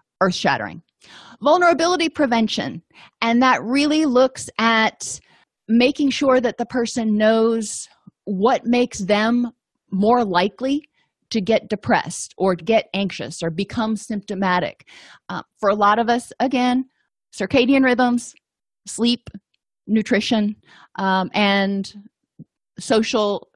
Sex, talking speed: female, 105 wpm